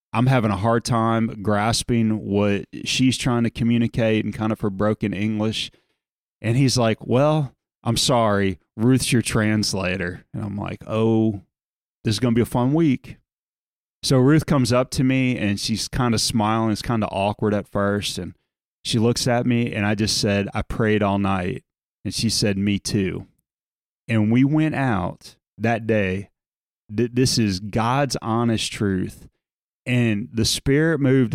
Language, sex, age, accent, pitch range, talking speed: English, male, 30-49, American, 110-130 Hz, 170 wpm